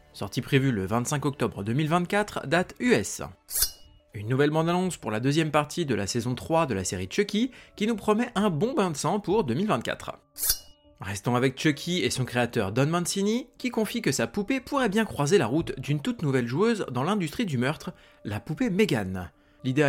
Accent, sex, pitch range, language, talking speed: French, male, 125-210 Hz, French, 190 wpm